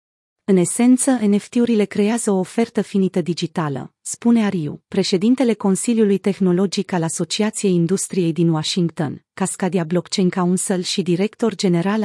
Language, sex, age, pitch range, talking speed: Romanian, female, 30-49, 175-220 Hz, 120 wpm